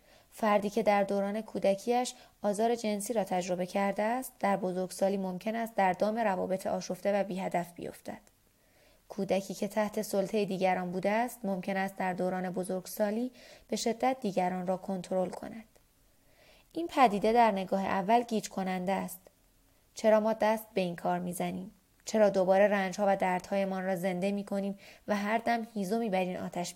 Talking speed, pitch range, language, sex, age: 155 wpm, 185-220 Hz, Persian, female, 20-39